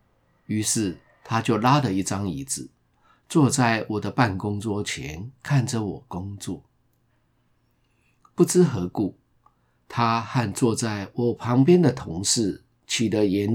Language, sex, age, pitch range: Chinese, male, 50-69, 100-130 Hz